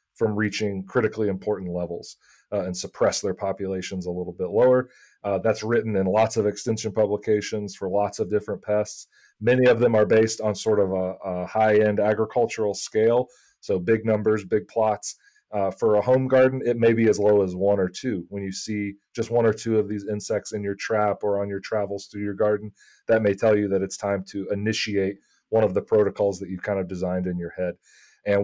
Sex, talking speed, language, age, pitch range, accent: male, 215 wpm, English, 30-49, 100-115 Hz, American